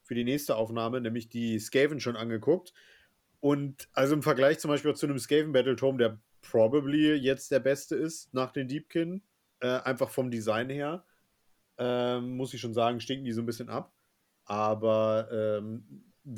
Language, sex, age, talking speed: German, male, 40-59, 165 wpm